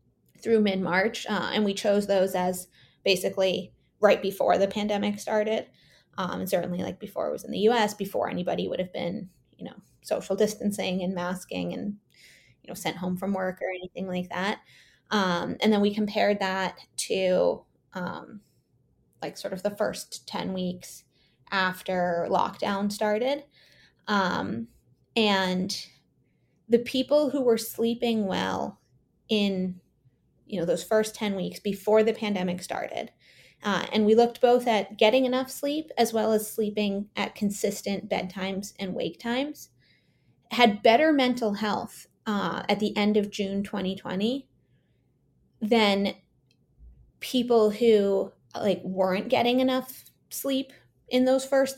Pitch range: 190-230 Hz